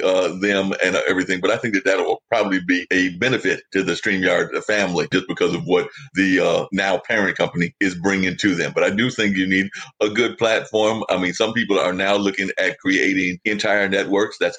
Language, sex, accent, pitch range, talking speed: English, male, American, 95-105 Hz, 215 wpm